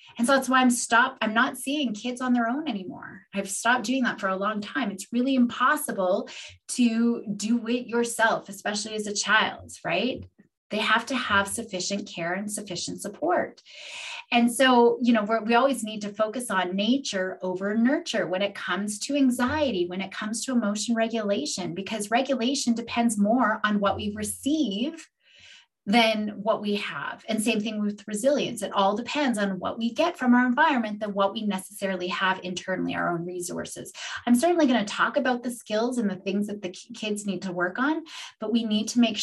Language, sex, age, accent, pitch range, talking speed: English, female, 30-49, American, 200-245 Hz, 195 wpm